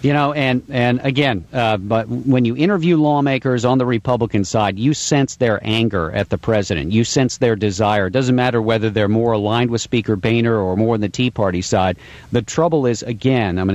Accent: American